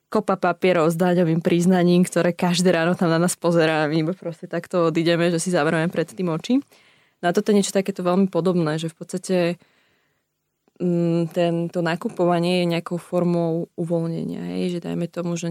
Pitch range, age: 165-185 Hz, 20-39